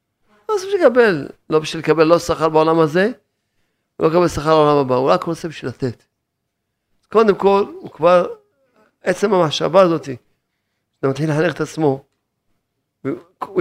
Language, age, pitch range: Hebrew, 40-59, 120-160 Hz